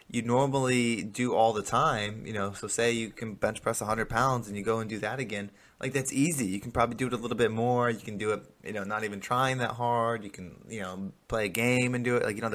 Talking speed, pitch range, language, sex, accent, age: 280 wpm, 110-140 Hz, English, male, American, 20-39